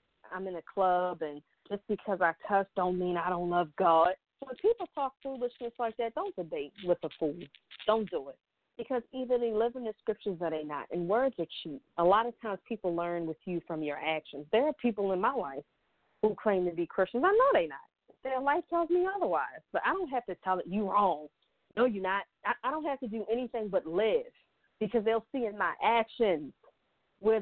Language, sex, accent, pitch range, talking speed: English, female, American, 175-230 Hz, 225 wpm